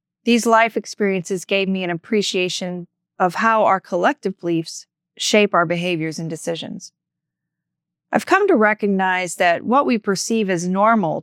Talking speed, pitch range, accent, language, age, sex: 145 wpm, 175-225 Hz, American, English, 30-49, female